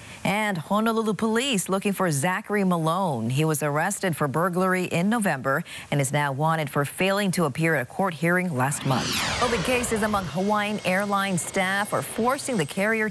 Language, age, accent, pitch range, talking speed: English, 40-59, American, 150-200 Hz, 180 wpm